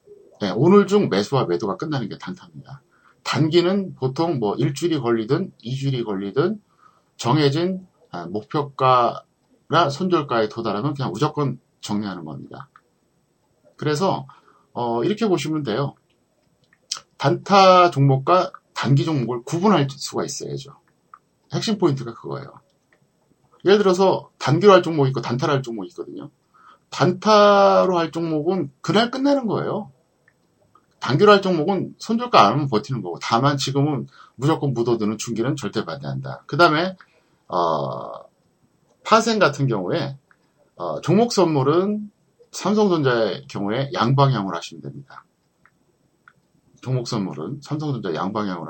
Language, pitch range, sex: Korean, 120-185 Hz, male